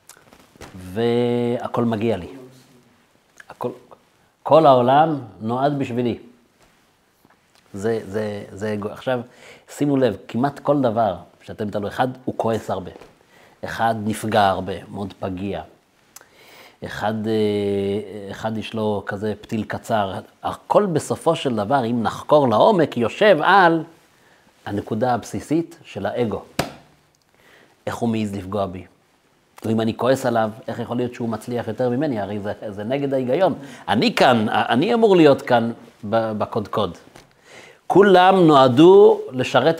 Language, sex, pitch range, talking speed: Hebrew, male, 105-140 Hz, 120 wpm